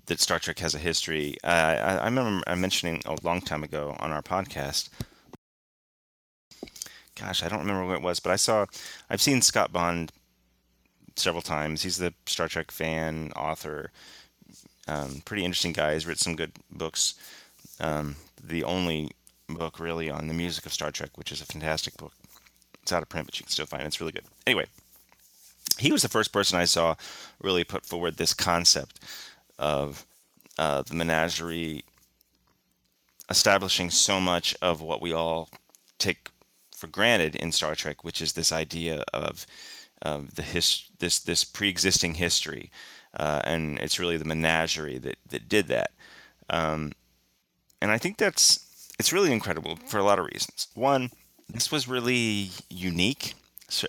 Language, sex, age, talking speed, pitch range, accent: English, male, 30-49, 165 wpm, 75-95 Hz, American